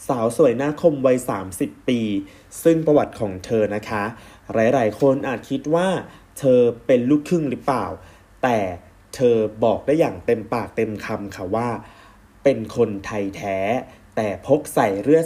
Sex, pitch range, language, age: male, 105-135 Hz, Thai, 20-39